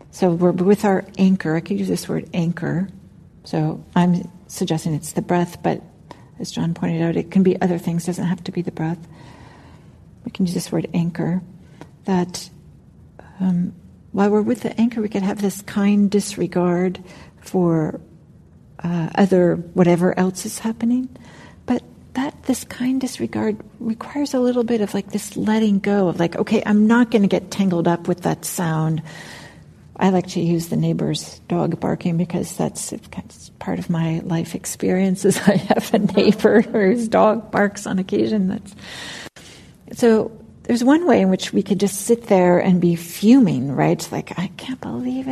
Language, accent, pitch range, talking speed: English, American, 175-225 Hz, 175 wpm